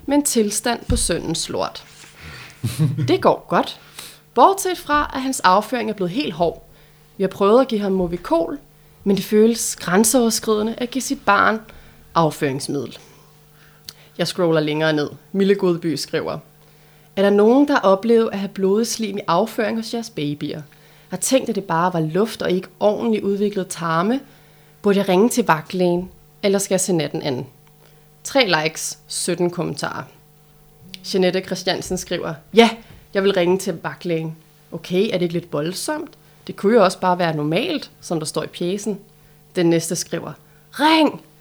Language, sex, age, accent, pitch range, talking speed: Danish, female, 30-49, native, 155-215 Hz, 165 wpm